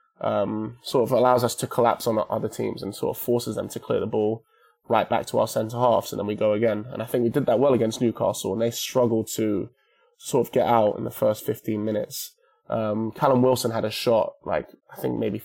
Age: 20-39